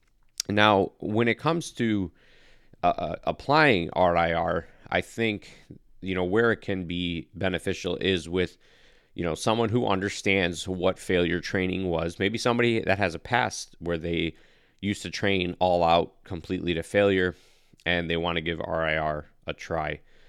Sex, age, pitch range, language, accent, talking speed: male, 30-49, 85-100 Hz, English, American, 155 wpm